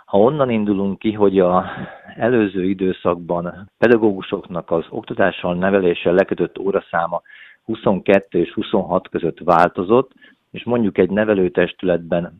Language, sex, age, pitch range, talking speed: Hungarian, male, 50-69, 90-105 Hz, 110 wpm